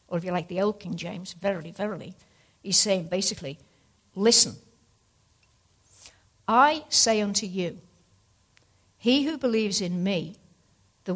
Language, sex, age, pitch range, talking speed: English, female, 60-79, 165-215 Hz, 130 wpm